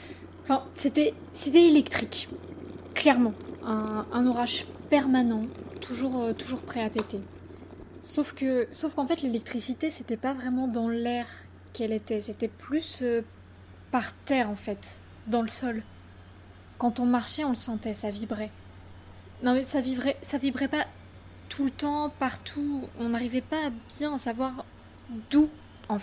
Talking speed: 150 wpm